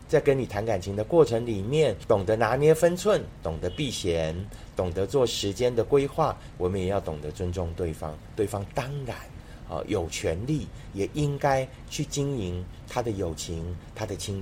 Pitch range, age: 95-135 Hz, 30-49